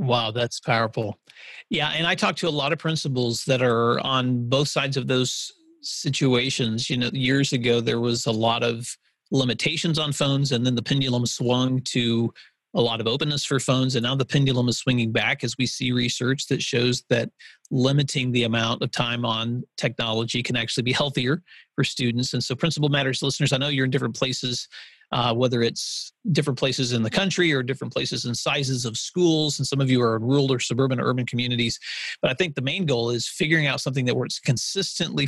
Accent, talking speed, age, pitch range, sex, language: American, 210 wpm, 40-59, 120-145 Hz, male, English